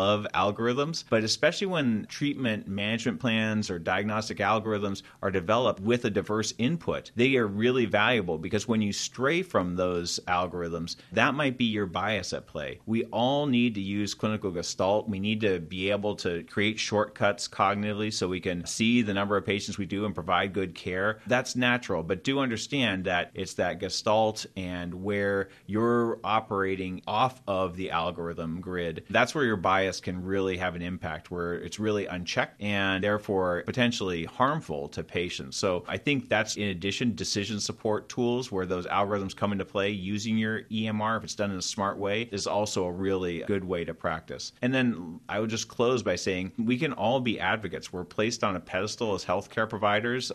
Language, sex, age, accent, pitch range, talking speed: English, male, 30-49, American, 95-115 Hz, 185 wpm